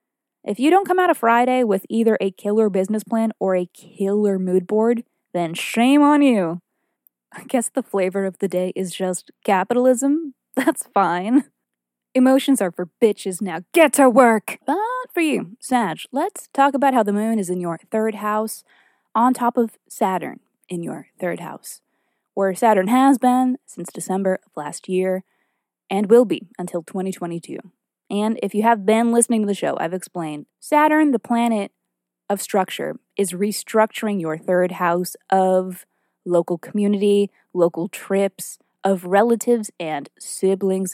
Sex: female